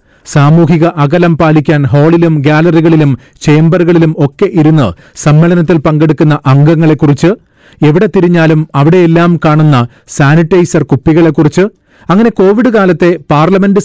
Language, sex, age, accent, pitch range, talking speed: Malayalam, male, 40-59, native, 150-175 Hz, 90 wpm